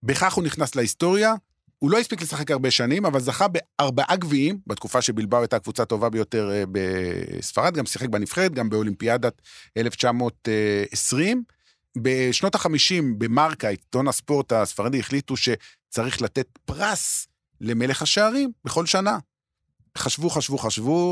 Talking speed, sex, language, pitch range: 125 wpm, male, Hebrew, 115-160 Hz